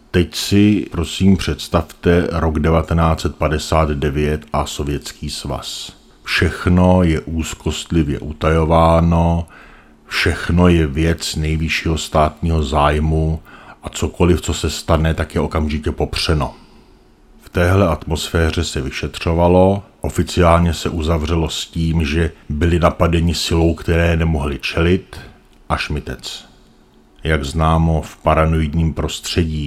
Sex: male